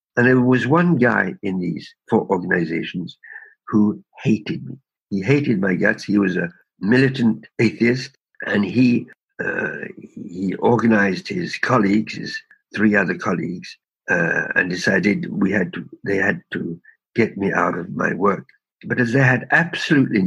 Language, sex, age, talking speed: English, male, 60-79, 155 wpm